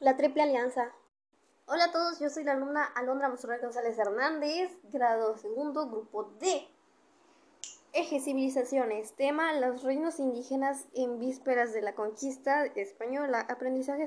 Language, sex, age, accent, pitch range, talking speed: Spanish, female, 10-29, Mexican, 235-290 Hz, 130 wpm